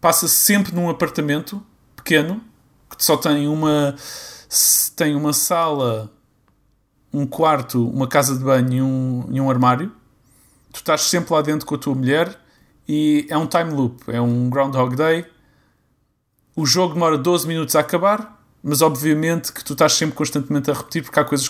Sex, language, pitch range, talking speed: male, Portuguese, 130-155 Hz, 160 wpm